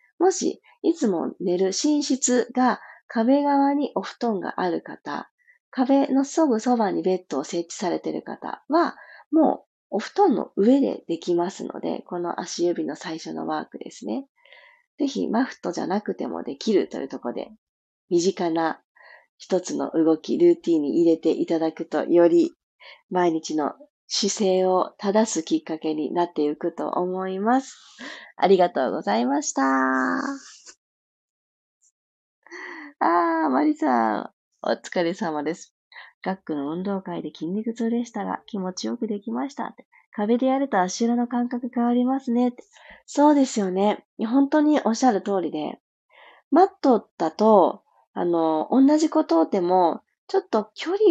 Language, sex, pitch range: Japanese, female, 175-280 Hz